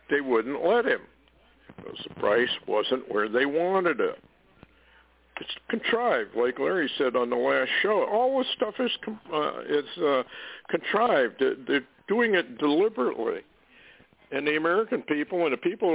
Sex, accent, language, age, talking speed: male, American, English, 60-79, 150 wpm